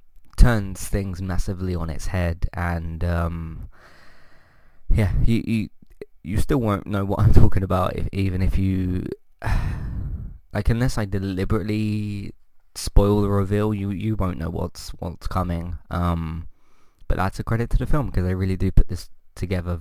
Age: 20-39